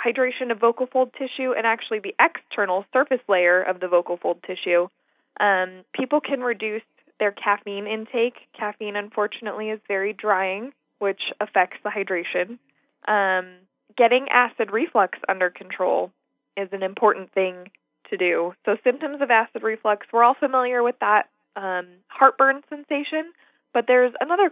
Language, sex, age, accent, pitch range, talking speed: English, female, 10-29, American, 195-245 Hz, 145 wpm